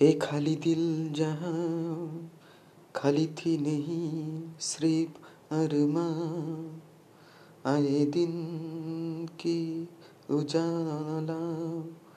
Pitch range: 145-165 Hz